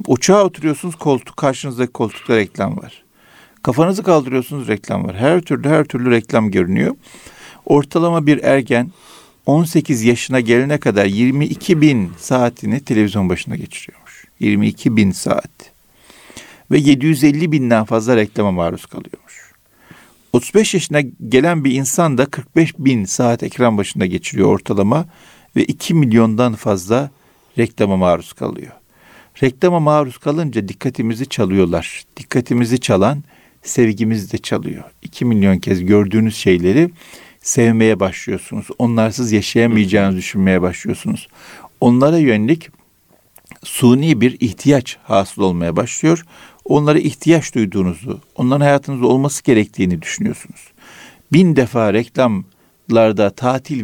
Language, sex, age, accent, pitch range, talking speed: Turkish, male, 50-69, native, 110-150 Hz, 115 wpm